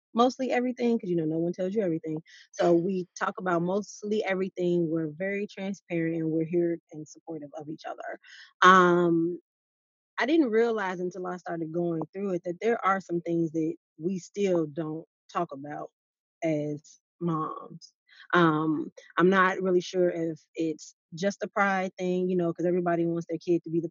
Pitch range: 165-190 Hz